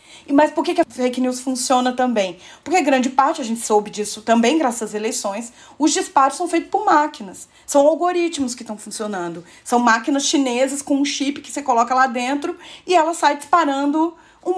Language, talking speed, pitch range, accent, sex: Portuguese, 190 wpm, 230-305 Hz, Brazilian, female